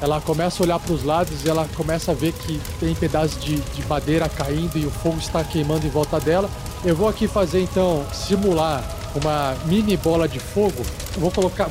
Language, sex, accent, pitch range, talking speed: Portuguese, male, Brazilian, 150-180 Hz, 210 wpm